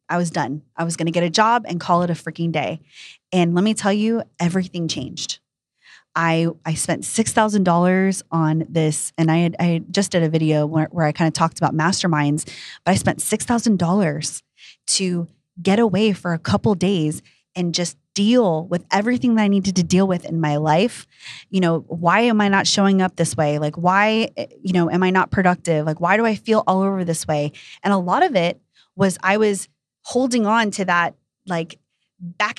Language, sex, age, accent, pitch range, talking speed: English, female, 20-39, American, 165-200 Hz, 205 wpm